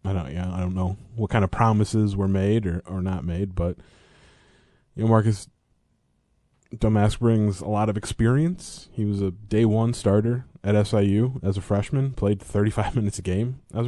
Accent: American